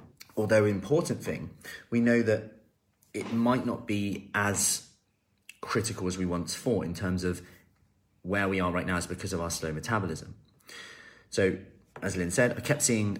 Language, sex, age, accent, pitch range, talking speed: English, male, 30-49, British, 90-105 Hz, 170 wpm